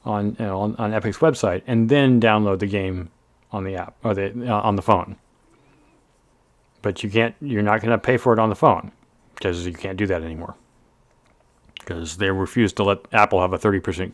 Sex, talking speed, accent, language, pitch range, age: male, 210 wpm, American, English, 105-135 Hz, 40-59